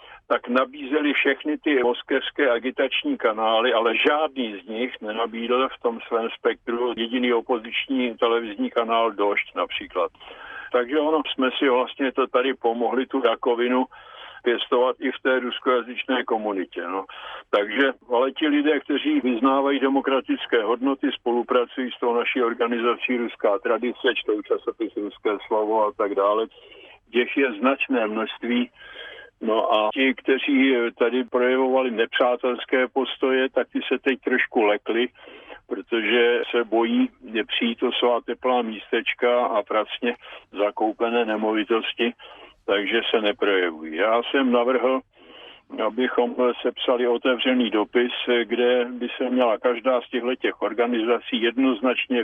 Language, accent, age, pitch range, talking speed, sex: Czech, native, 50-69, 115-130 Hz, 125 wpm, male